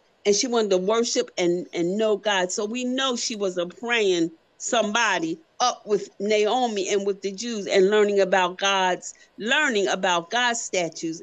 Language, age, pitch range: English, 50-69, 195-285 Hz